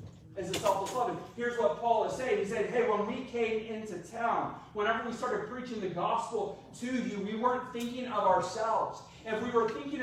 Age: 30-49